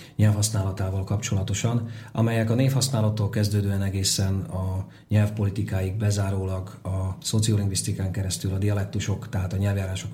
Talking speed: 105 wpm